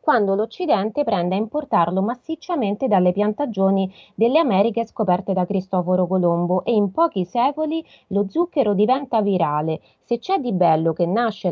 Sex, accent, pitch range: female, native, 180-235 Hz